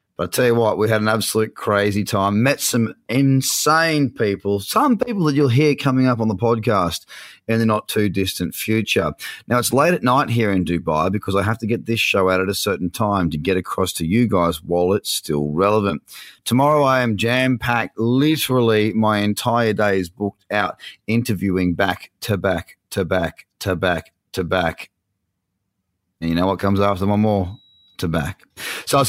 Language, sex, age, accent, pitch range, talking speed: English, male, 30-49, Australian, 95-125 Hz, 200 wpm